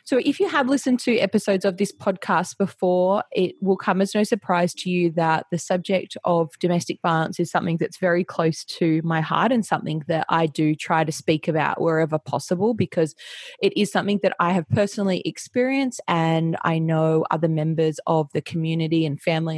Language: English